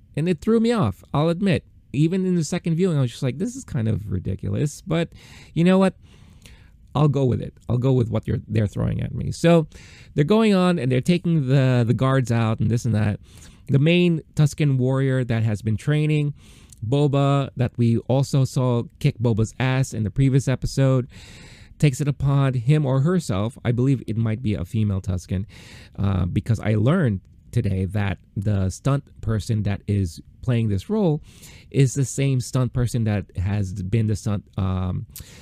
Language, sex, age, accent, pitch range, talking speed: English, male, 30-49, American, 100-135 Hz, 190 wpm